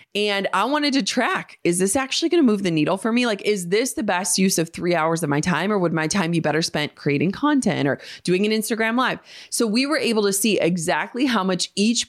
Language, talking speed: English, 255 wpm